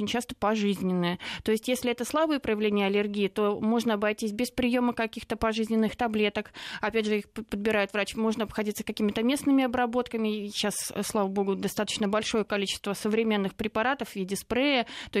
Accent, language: native, Russian